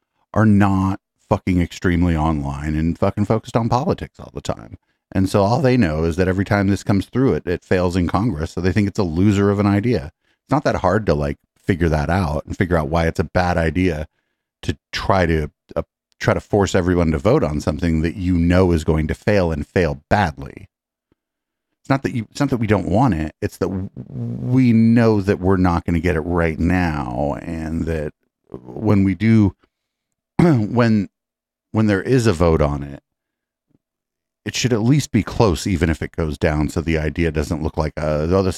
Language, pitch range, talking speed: English, 80-105 Hz, 210 wpm